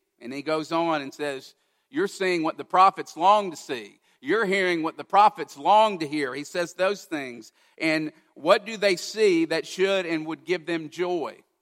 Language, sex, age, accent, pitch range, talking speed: English, male, 50-69, American, 140-195 Hz, 195 wpm